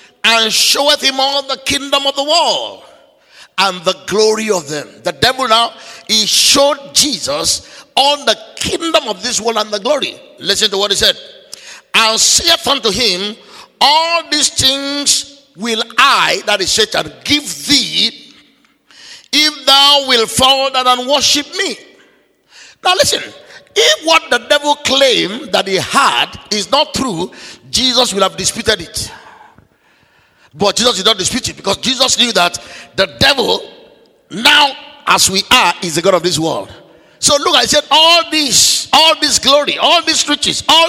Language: English